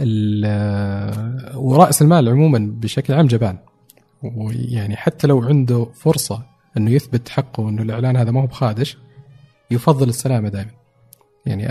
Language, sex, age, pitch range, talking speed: Arabic, male, 40-59, 115-145 Hz, 125 wpm